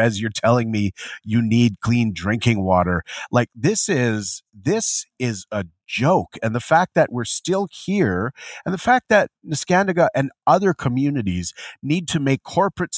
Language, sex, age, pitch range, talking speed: English, male, 30-49, 105-140 Hz, 160 wpm